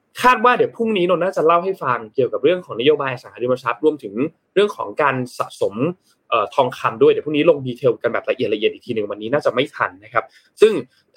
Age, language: 20-39, Thai